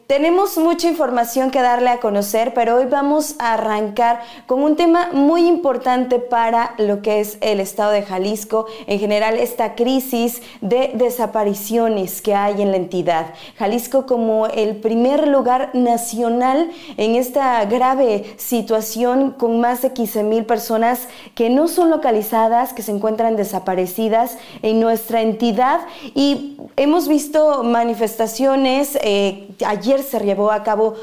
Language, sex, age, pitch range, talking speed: Spanish, female, 30-49, 220-255 Hz, 140 wpm